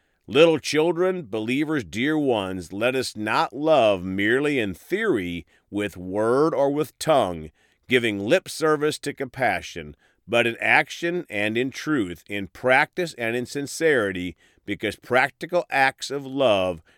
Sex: male